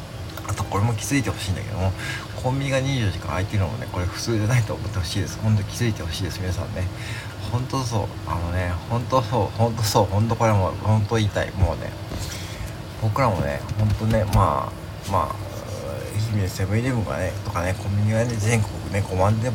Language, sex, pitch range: Japanese, male, 100-115 Hz